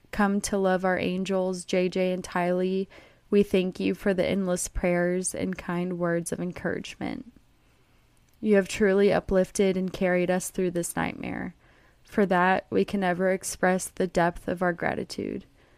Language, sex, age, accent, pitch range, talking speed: English, female, 20-39, American, 175-190 Hz, 155 wpm